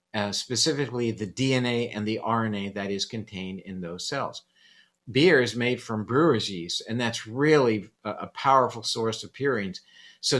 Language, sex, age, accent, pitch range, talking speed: English, male, 50-69, American, 110-135 Hz, 165 wpm